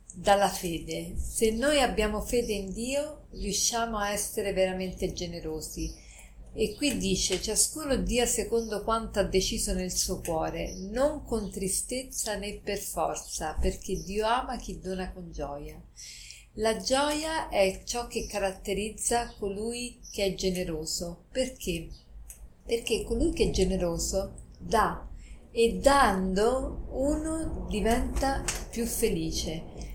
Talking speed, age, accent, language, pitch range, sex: 120 wpm, 50-69, native, Italian, 185-235 Hz, female